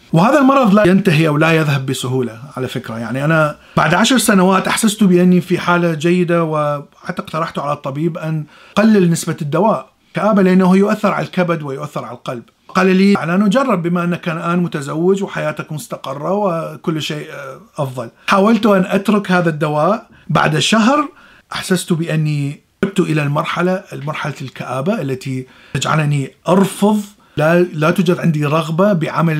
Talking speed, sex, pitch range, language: 145 wpm, male, 145-190 Hz, Arabic